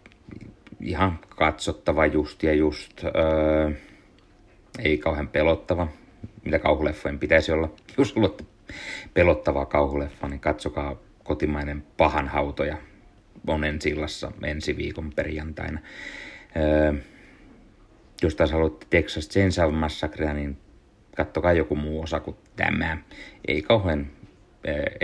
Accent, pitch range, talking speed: native, 75-80 Hz, 105 wpm